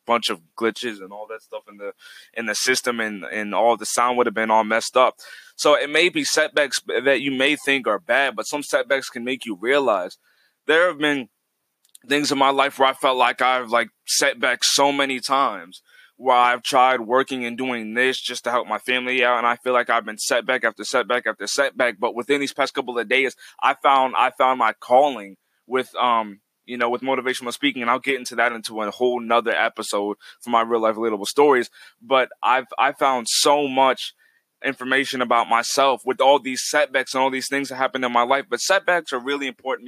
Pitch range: 120-135 Hz